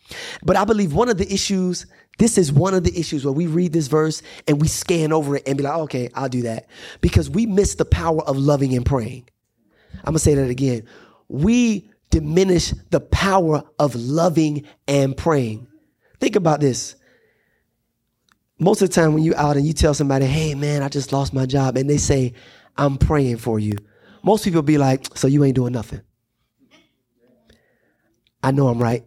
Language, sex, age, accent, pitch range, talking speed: English, male, 30-49, American, 120-175 Hz, 195 wpm